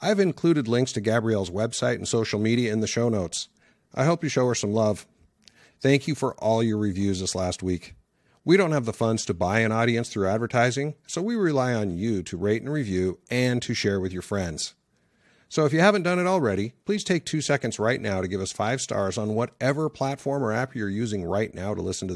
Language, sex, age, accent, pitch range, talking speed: English, male, 50-69, American, 100-140 Hz, 230 wpm